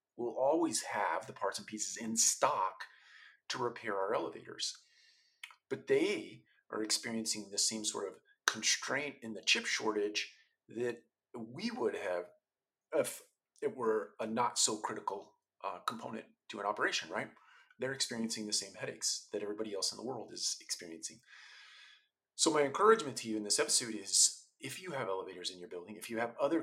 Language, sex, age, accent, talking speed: English, male, 40-59, American, 170 wpm